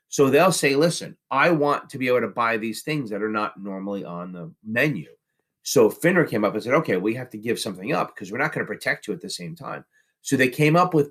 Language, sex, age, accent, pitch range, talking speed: English, male, 40-59, American, 110-155 Hz, 265 wpm